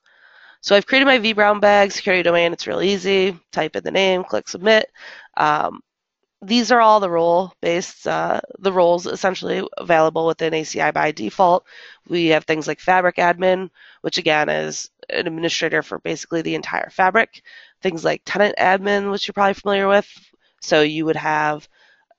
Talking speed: 165 wpm